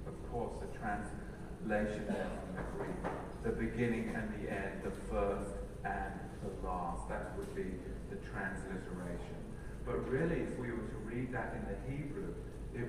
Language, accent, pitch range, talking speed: English, British, 110-155 Hz, 155 wpm